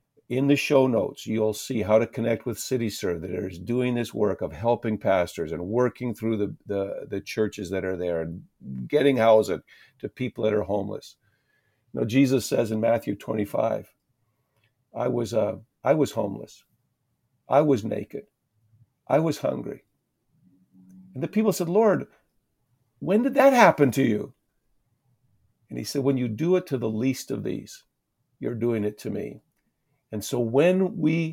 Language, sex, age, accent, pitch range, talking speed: English, male, 50-69, American, 110-135 Hz, 165 wpm